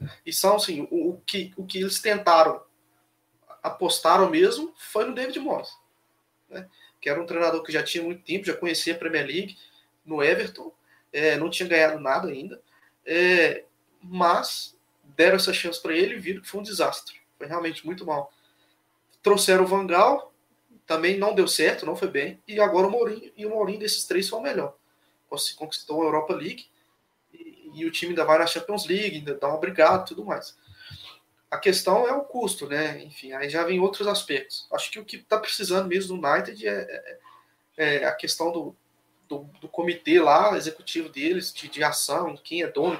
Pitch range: 160-210 Hz